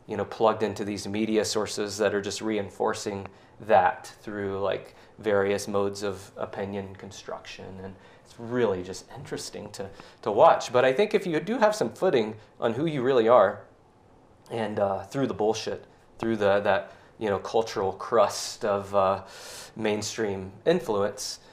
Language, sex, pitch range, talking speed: English, male, 100-110 Hz, 160 wpm